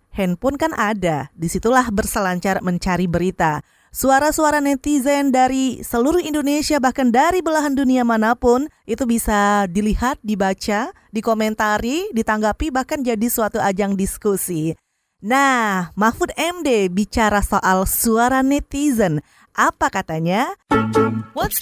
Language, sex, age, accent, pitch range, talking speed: Indonesian, female, 20-39, native, 190-260 Hz, 105 wpm